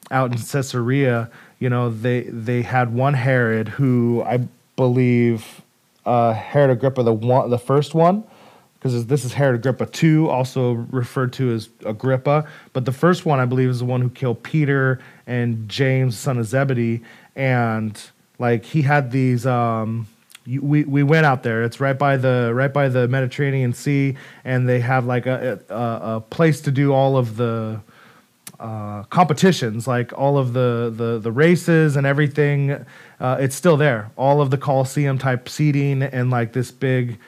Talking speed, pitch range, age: 170 wpm, 120-140 Hz, 30-49